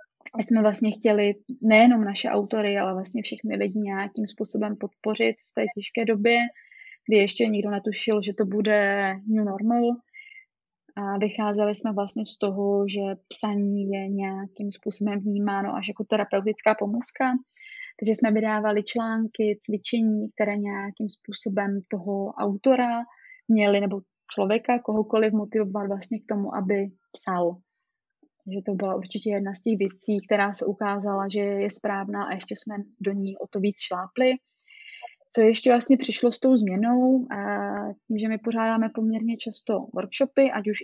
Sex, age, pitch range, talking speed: female, 20-39, 200-235 Hz, 150 wpm